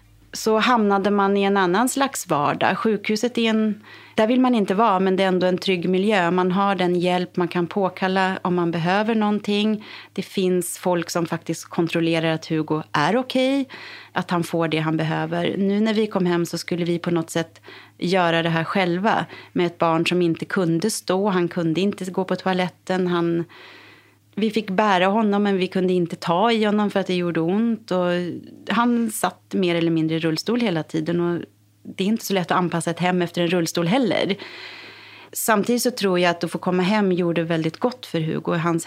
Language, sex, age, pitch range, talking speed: Swedish, female, 30-49, 165-195 Hz, 205 wpm